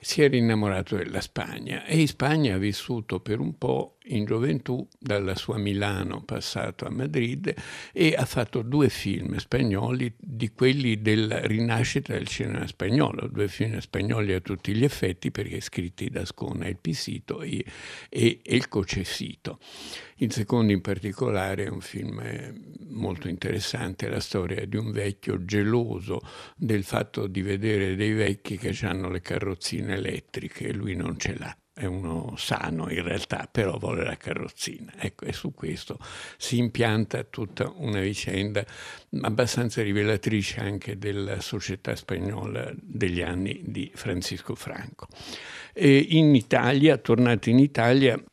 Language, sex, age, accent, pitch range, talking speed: Italian, male, 60-79, native, 95-120 Hz, 145 wpm